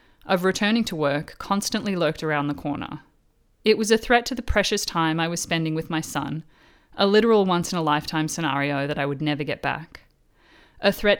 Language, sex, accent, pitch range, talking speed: English, female, Australian, 150-190 Hz, 205 wpm